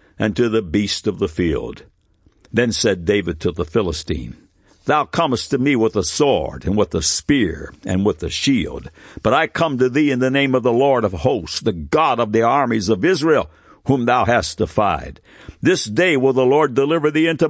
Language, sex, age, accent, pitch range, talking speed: English, male, 60-79, American, 105-150 Hz, 205 wpm